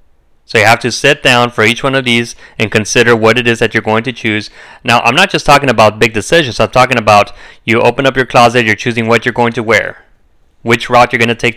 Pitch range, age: 115-140 Hz, 30-49